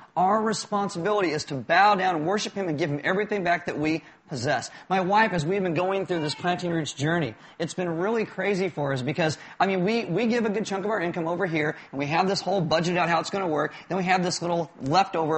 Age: 40-59